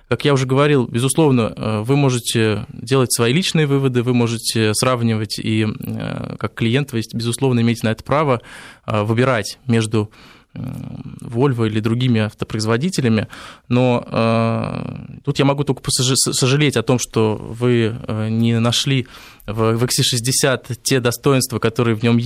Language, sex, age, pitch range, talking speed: Russian, male, 20-39, 115-130 Hz, 130 wpm